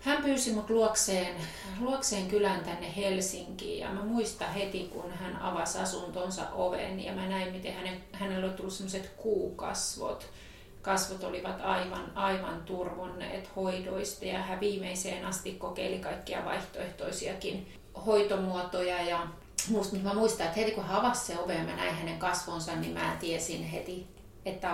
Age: 30-49